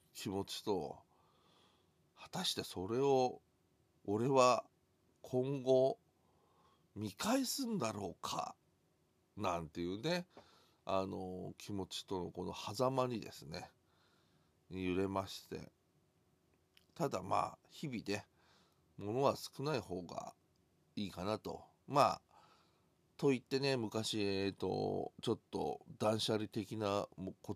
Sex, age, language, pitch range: male, 40-59, Japanese, 95-125 Hz